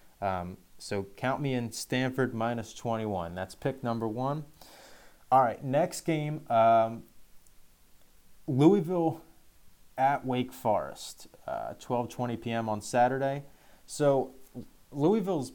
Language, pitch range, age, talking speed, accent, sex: English, 105-135 Hz, 20-39, 115 wpm, American, male